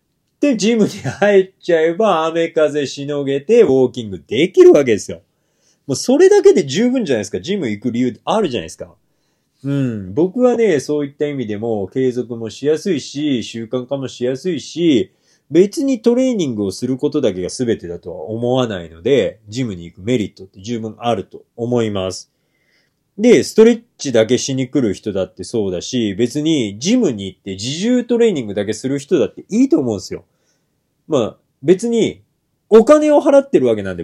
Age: 30-49